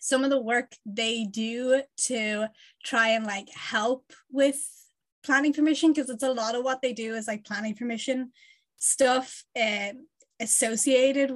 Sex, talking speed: female, 155 wpm